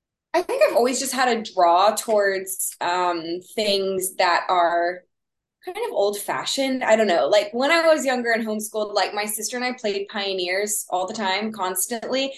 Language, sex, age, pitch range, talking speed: English, female, 20-39, 190-245 Hz, 180 wpm